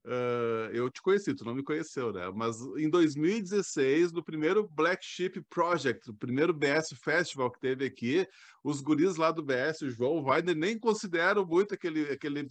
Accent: Brazilian